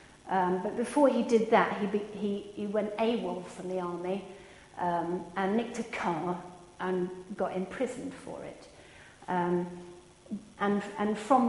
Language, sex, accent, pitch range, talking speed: English, female, British, 195-245 Hz, 150 wpm